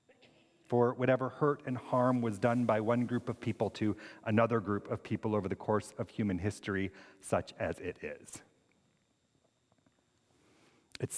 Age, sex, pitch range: 40-59, male, 120-140 Hz